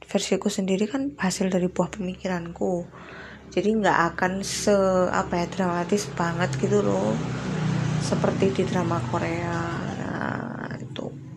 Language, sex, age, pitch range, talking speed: Indonesian, female, 20-39, 170-200 Hz, 120 wpm